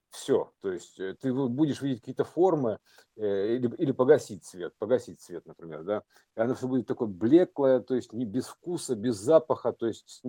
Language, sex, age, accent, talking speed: Russian, male, 50-69, native, 175 wpm